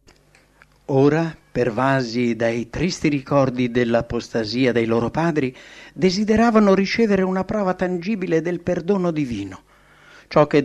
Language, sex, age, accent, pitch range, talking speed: English, male, 60-79, Italian, 120-170 Hz, 105 wpm